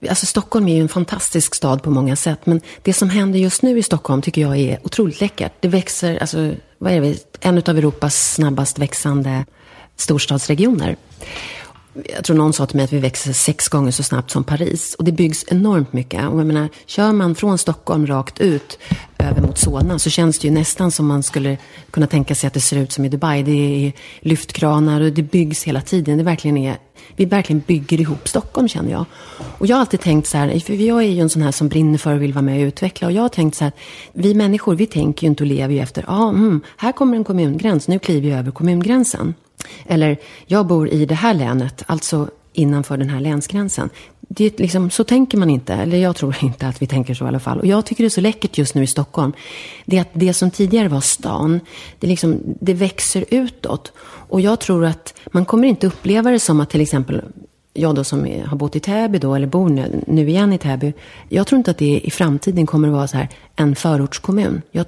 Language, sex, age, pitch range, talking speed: English, female, 30-49, 145-185 Hz, 230 wpm